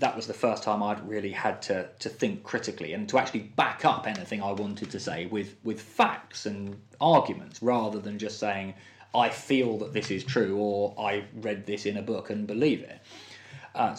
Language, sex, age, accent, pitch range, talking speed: English, male, 20-39, British, 105-125 Hz, 205 wpm